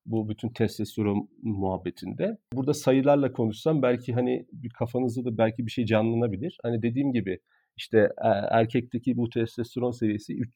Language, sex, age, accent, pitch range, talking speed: Turkish, male, 40-59, native, 110-140 Hz, 130 wpm